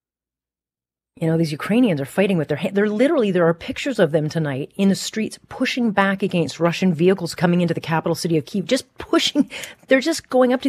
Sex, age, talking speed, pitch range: female, 30-49, 220 wpm, 150-185 Hz